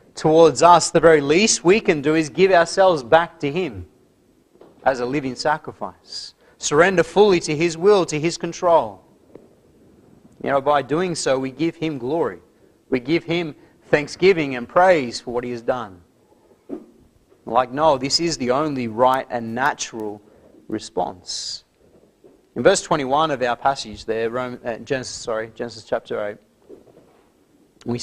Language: English